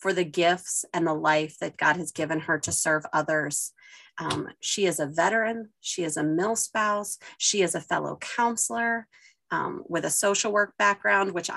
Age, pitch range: 30-49, 165-225 Hz